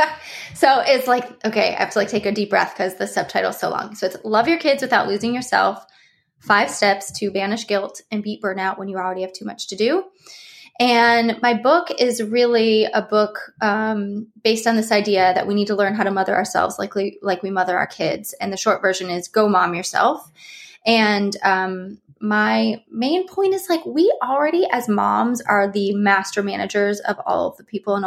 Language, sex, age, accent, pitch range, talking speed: English, female, 20-39, American, 195-235 Hz, 205 wpm